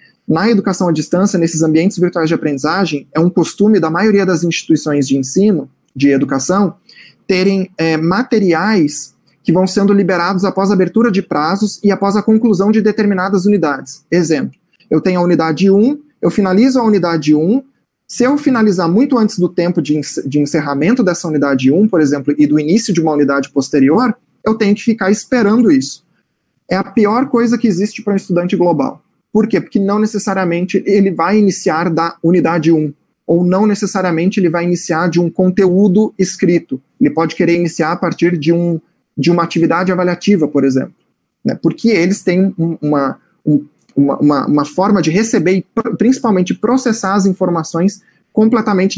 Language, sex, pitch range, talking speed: Portuguese, male, 165-205 Hz, 170 wpm